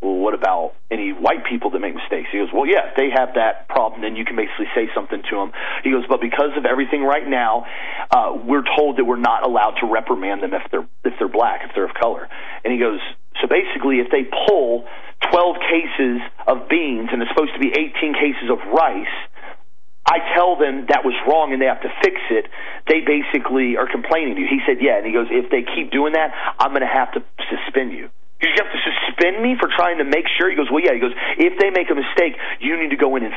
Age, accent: 40-59, American